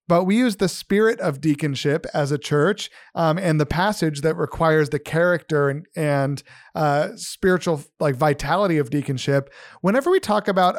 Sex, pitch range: male, 150-195 Hz